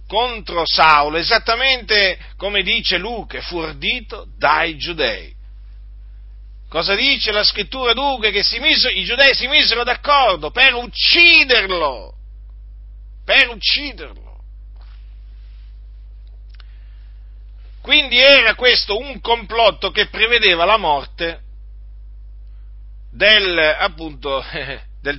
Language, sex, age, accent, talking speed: Italian, male, 50-69, native, 95 wpm